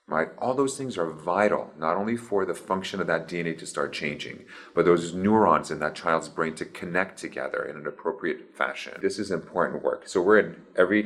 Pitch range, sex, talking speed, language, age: 75-105 Hz, male, 210 wpm, English, 30-49